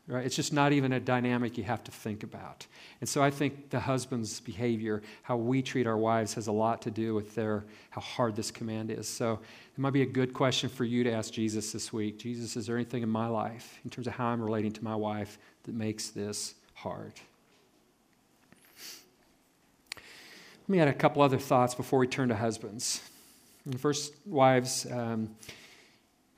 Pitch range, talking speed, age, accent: 110-130 Hz, 195 wpm, 40-59, American